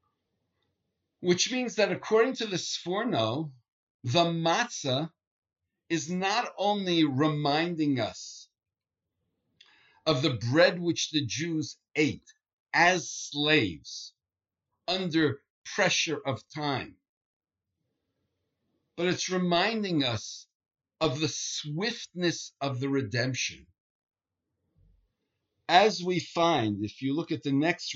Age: 60-79